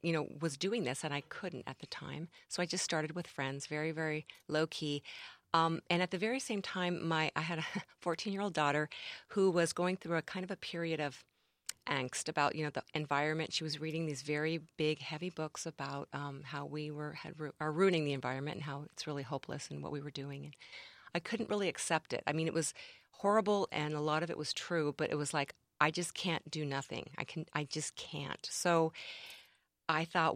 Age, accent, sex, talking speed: 40-59, American, female, 230 wpm